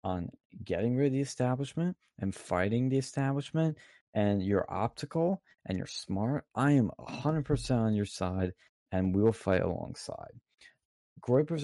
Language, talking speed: English, 155 wpm